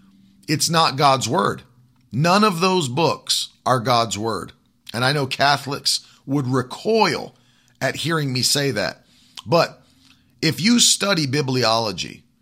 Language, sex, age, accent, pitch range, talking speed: English, male, 40-59, American, 125-170 Hz, 130 wpm